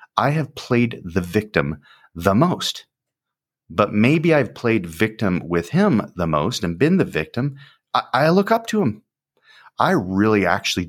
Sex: male